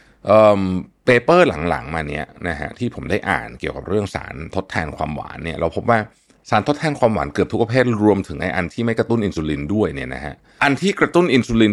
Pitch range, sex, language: 85-120 Hz, male, Thai